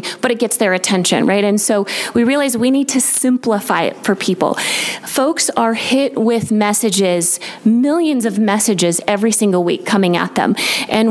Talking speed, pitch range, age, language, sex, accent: 175 wpm, 190-225 Hz, 30-49, English, female, American